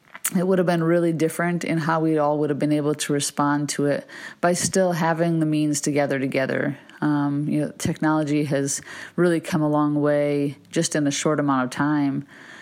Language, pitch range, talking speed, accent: English, 150-180 Hz, 205 wpm, American